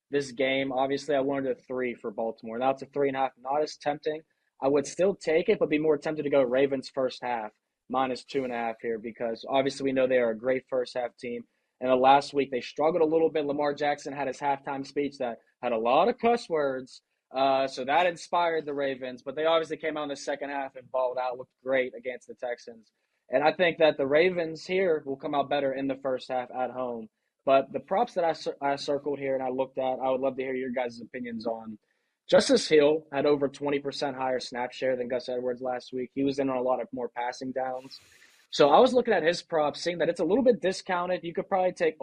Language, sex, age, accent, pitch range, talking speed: English, male, 20-39, American, 130-150 Hz, 250 wpm